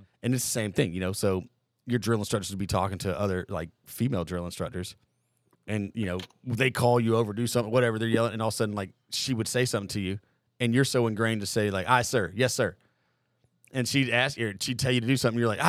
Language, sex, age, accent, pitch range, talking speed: English, male, 30-49, American, 115-150 Hz, 260 wpm